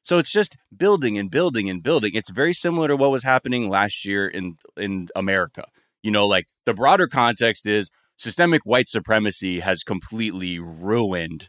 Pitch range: 95-120 Hz